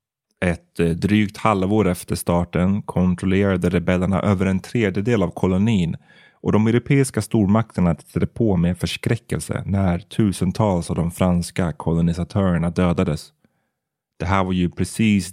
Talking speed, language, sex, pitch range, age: 125 wpm, Swedish, male, 85-100 Hz, 30-49